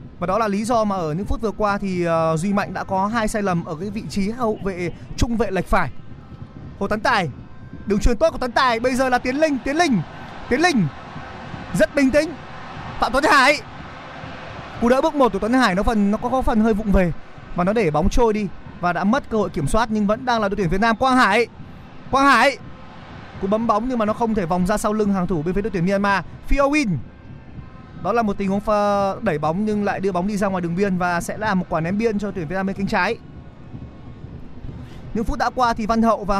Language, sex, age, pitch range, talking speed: Vietnamese, male, 20-39, 195-240 Hz, 250 wpm